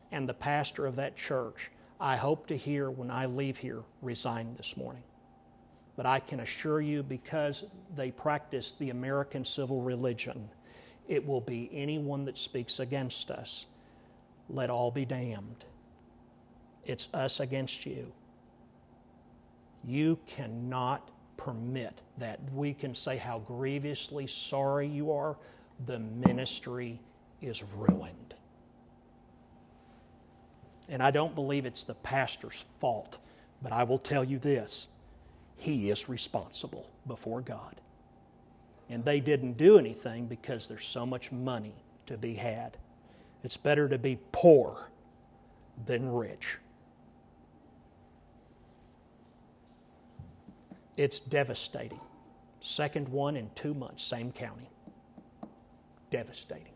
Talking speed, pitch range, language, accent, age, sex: 115 wpm, 120-140 Hz, English, American, 50-69, male